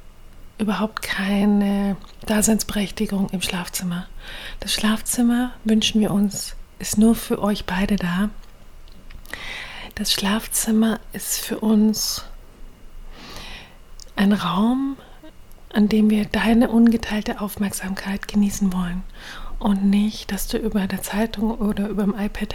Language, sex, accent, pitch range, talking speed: German, female, German, 195-225 Hz, 110 wpm